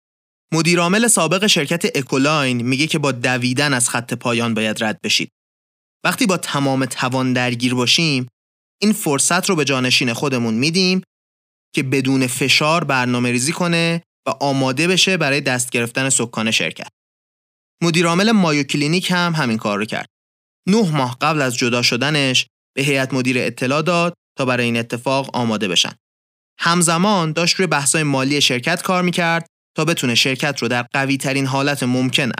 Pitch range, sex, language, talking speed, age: 120-165 Hz, male, Persian, 150 wpm, 30-49